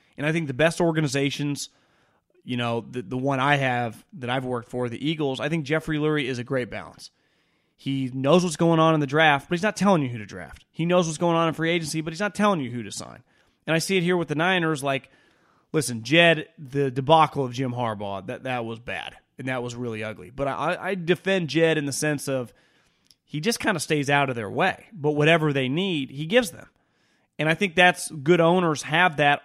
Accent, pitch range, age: American, 130-165 Hz, 30-49